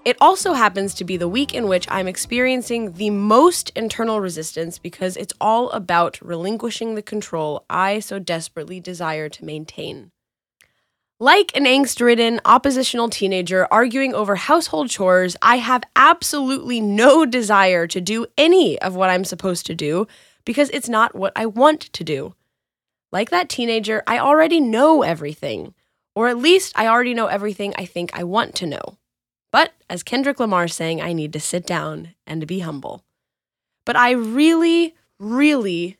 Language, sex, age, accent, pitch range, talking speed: English, female, 10-29, American, 185-260 Hz, 160 wpm